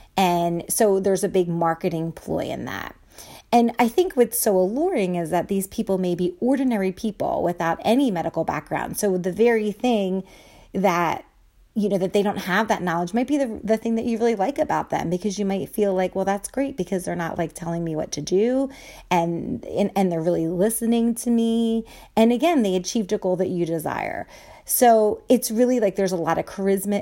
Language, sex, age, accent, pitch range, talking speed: English, female, 30-49, American, 170-230 Hz, 210 wpm